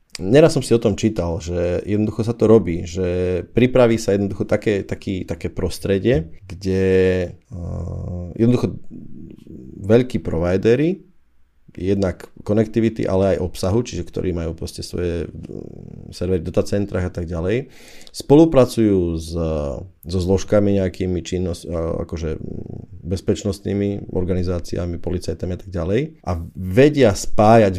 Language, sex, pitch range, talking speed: Slovak, male, 90-110 Hz, 110 wpm